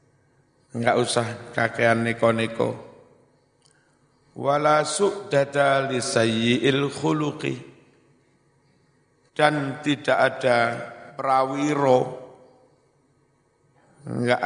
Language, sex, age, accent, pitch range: Indonesian, male, 50-69, native, 120-140 Hz